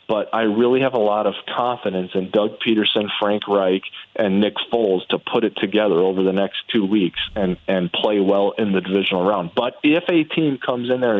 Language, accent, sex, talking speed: English, American, male, 215 wpm